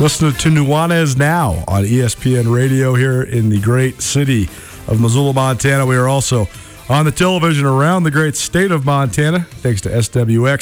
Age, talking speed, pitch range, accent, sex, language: 40-59, 170 wpm, 120-145 Hz, American, male, English